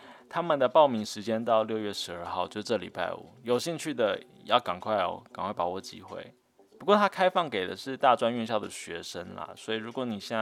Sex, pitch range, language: male, 105-130 Hz, Chinese